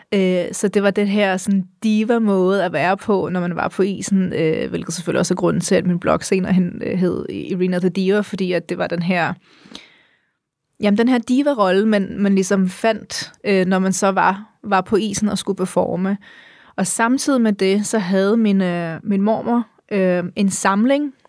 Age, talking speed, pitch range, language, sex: 30-49, 195 wpm, 185-215 Hz, Danish, female